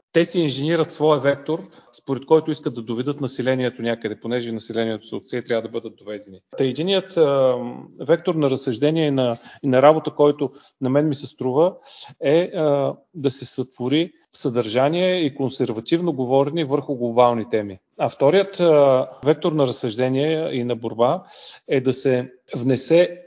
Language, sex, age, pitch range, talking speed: Bulgarian, male, 40-59, 125-155 Hz, 160 wpm